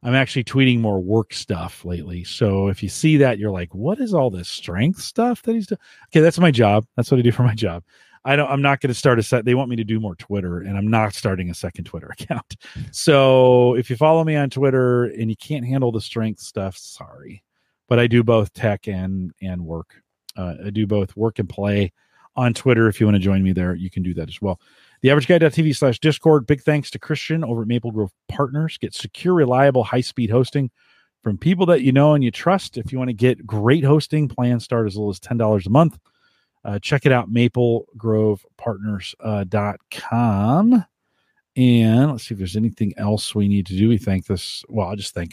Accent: American